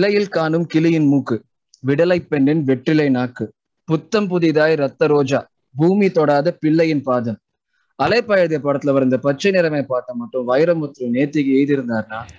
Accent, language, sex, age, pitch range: native, Tamil, male, 20-39, 140-190 Hz